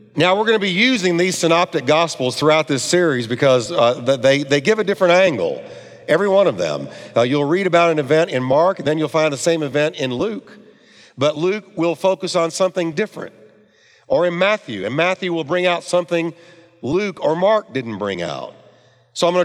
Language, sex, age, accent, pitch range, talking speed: English, male, 50-69, American, 140-185 Hz, 200 wpm